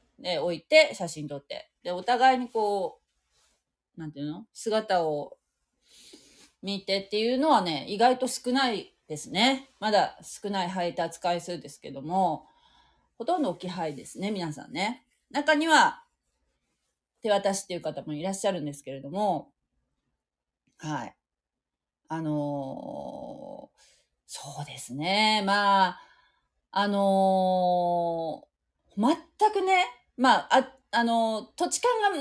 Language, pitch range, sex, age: Japanese, 175-265 Hz, female, 30-49